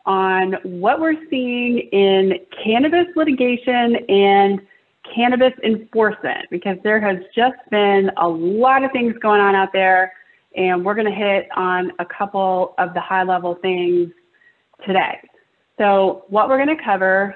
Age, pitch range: 30-49, 190-230 Hz